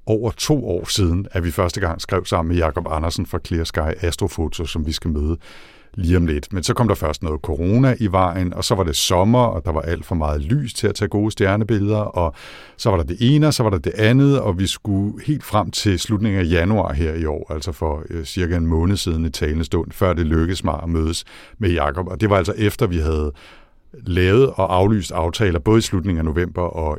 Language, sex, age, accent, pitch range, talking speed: Danish, male, 60-79, native, 80-105 Hz, 240 wpm